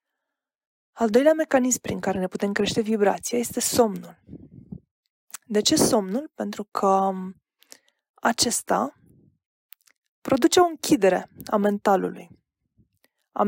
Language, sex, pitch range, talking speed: Romanian, female, 195-250 Hz, 100 wpm